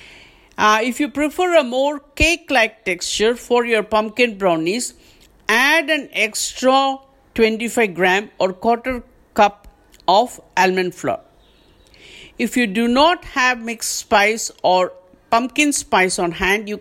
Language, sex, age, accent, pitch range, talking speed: English, female, 50-69, Indian, 205-280 Hz, 130 wpm